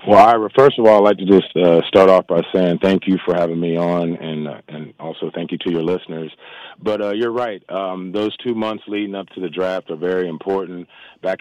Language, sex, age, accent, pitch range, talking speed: English, male, 30-49, American, 85-95 Hz, 240 wpm